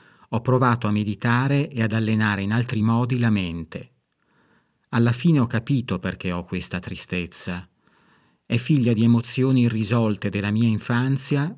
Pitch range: 105-130 Hz